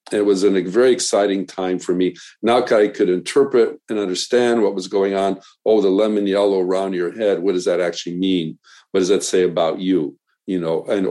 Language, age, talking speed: English, 50-69, 210 wpm